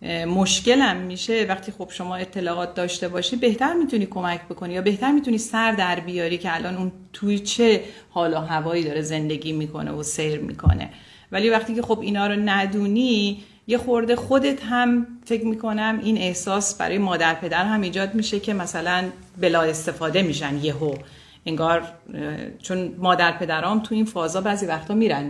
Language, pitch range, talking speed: Persian, 175-215 Hz, 165 wpm